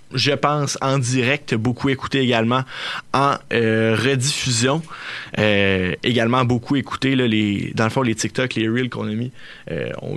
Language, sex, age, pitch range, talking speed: French, male, 20-39, 120-140 Hz, 160 wpm